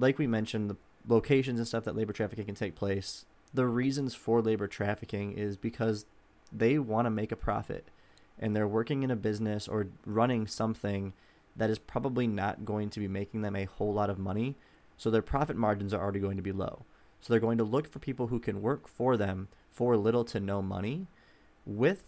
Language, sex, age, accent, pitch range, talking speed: English, male, 20-39, American, 100-115 Hz, 210 wpm